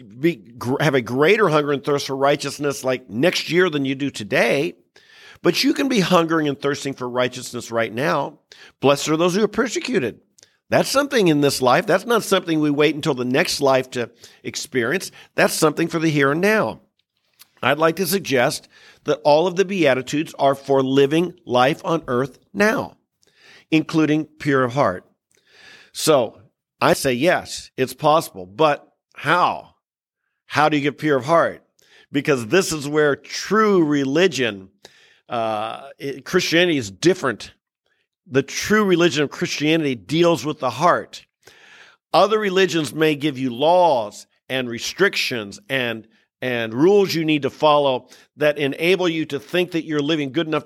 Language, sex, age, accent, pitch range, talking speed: English, male, 50-69, American, 135-180 Hz, 160 wpm